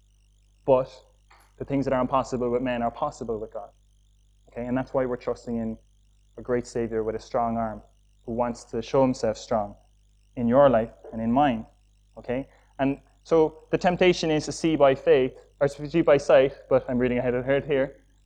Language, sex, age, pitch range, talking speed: English, male, 20-39, 115-155 Hz, 195 wpm